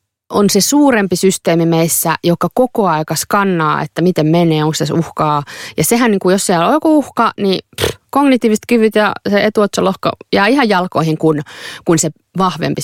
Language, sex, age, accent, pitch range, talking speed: Finnish, female, 30-49, native, 155-245 Hz, 170 wpm